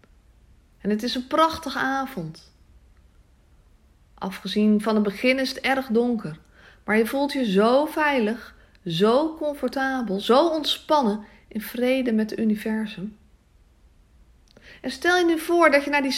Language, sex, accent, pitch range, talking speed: Dutch, female, Dutch, 195-280 Hz, 140 wpm